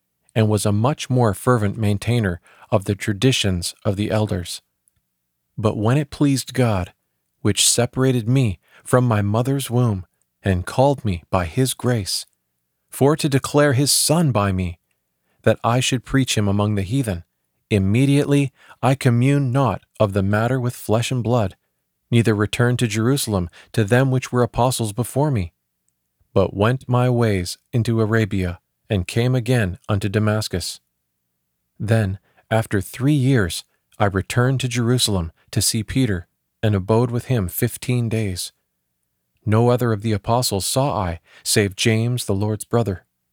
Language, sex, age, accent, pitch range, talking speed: English, male, 40-59, American, 95-125 Hz, 150 wpm